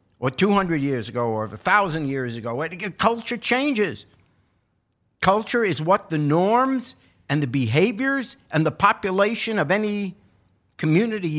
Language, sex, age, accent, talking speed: English, male, 50-69, American, 125 wpm